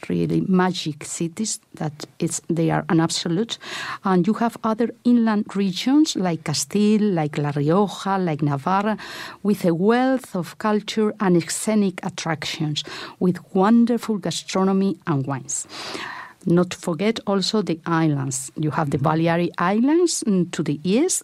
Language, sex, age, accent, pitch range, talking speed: English, female, 50-69, Spanish, 155-195 Hz, 135 wpm